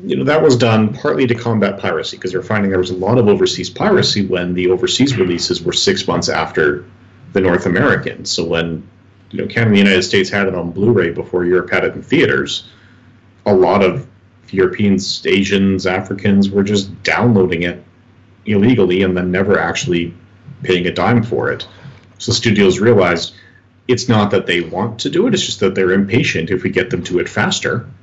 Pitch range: 90-110 Hz